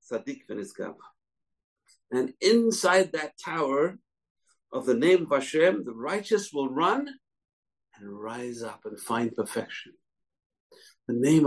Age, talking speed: 60-79, 110 wpm